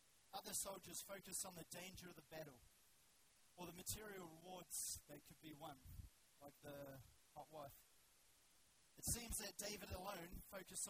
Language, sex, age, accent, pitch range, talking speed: English, male, 30-49, Australian, 145-180 Hz, 150 wpm